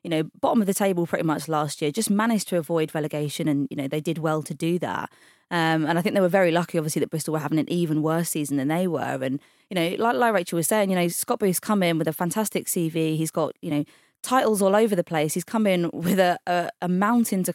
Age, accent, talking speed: 20-39, British, 275 wpm